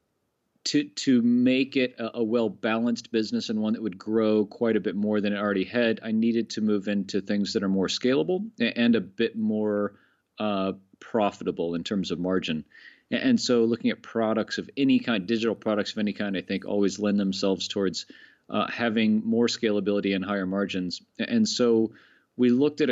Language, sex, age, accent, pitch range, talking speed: English, male, 40-59, American, 100-120 Hz, 190 wpm